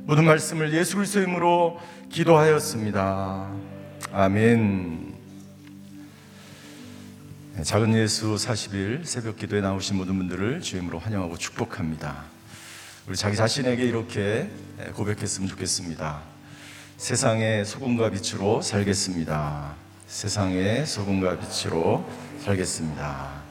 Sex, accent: male, native